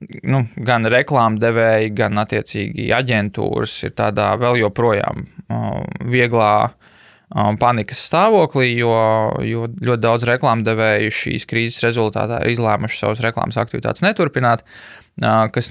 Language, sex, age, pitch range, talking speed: English, male, 20-39, 110-130 Hz, 115 wpm